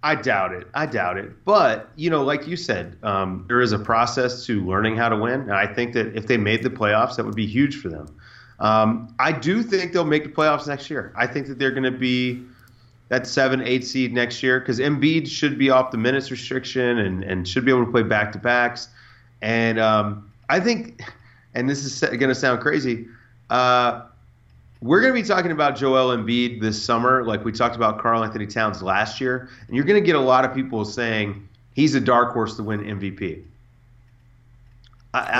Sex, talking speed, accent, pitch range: male, 215 wpm, American, 110-135 Hz